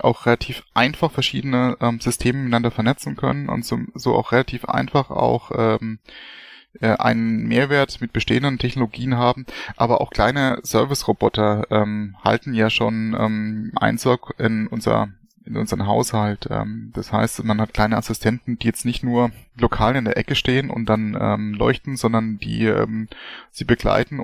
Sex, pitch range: male, 110-125 Hz